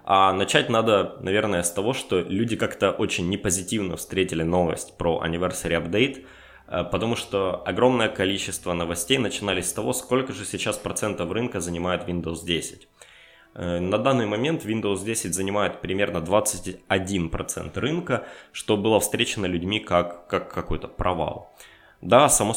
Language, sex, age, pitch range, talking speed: Russian, male, 20-39, 90-110 Hz, 140 wpm